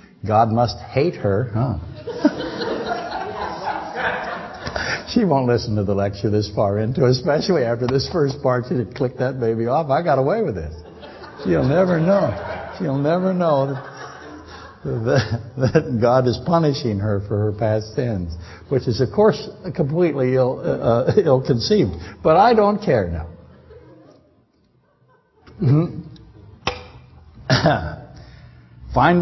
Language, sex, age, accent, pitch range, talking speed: English, male, 60-79, American, 115-180 Hz, 130 wpm